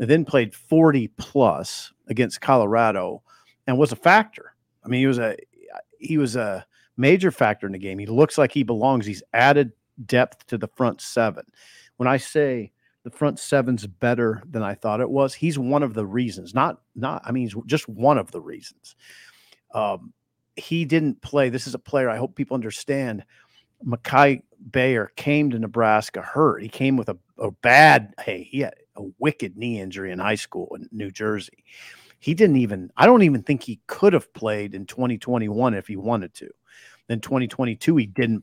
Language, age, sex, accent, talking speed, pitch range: English, 50-69, male, American, 190 wpm, 110-140 Hz